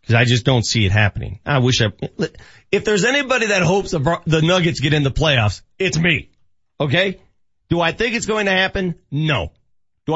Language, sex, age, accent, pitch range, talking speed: English, male, 40-59, American, 115-190 Hz, 200 wpm